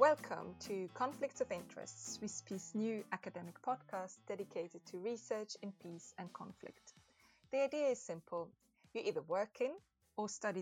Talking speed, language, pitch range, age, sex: 145 wpm, English, 175-225 Hz, 20-39, female